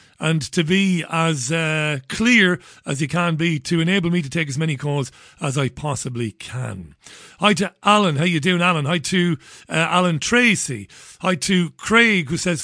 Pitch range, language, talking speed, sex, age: 145-185 Hz, English, 185 wpm, male, 40-59